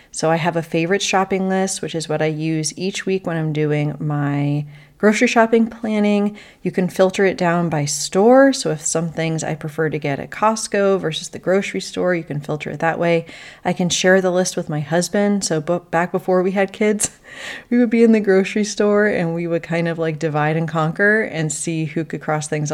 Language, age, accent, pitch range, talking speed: English, 30-49, American, 150-185 Hz, 220 wpm